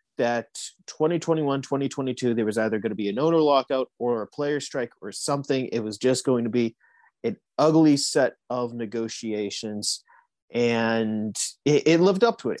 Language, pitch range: English, 120-145 Hz